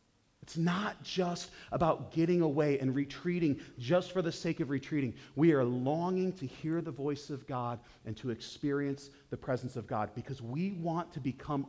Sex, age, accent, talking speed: male, 40-59, American, 180 wpm